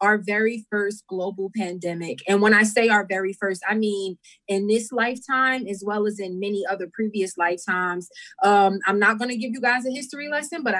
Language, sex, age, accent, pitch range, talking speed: English, female, 20-39, American, 190-220 Hz, 205 wpm